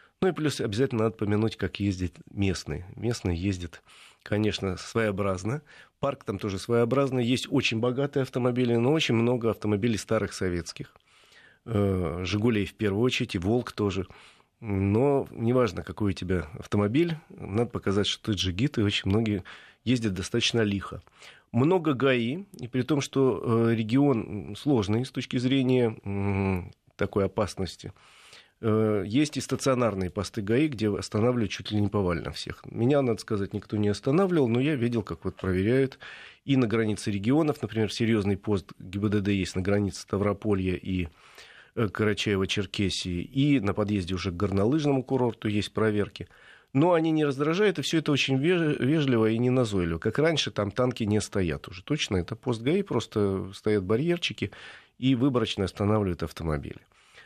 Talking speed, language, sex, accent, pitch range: 145 wpm, Russian, male, native, 100-130 Hz